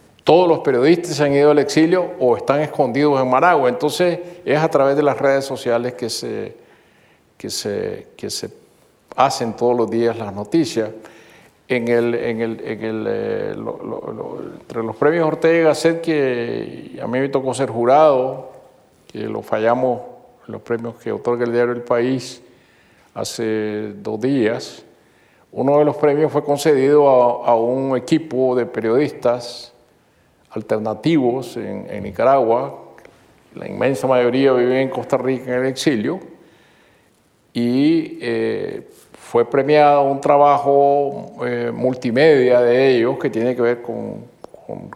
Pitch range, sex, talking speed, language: 120-145 Hz, male, 135 wpm, Spanish